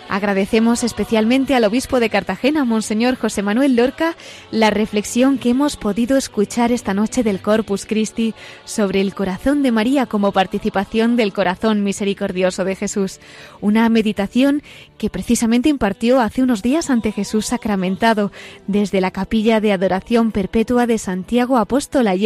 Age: 20-39